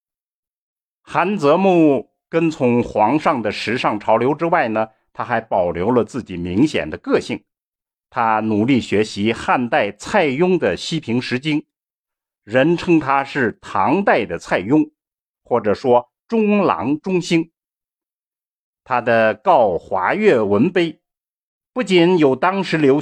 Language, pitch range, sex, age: Chinese, 120-175 Hz, male, 50-69